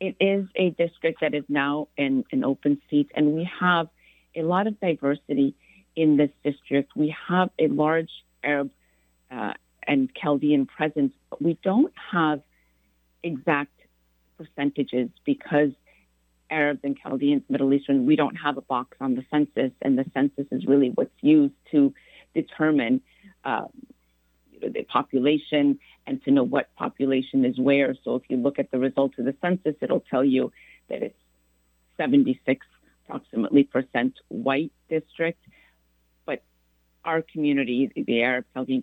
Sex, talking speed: female, 145 wpm